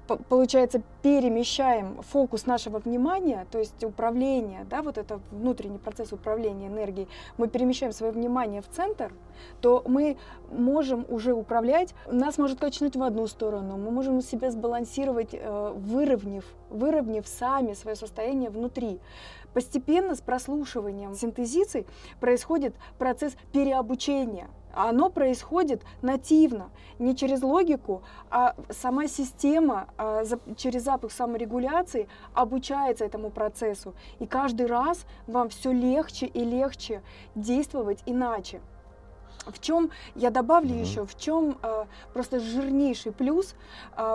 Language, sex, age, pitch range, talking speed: Russian, female, 20-39, 225-275 Hz, 120 wpm